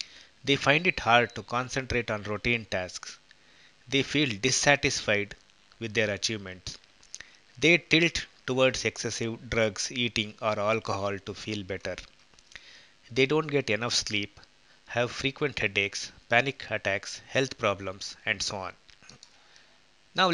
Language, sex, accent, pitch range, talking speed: English, male, Indian, 105-130 Hz, 125 wpm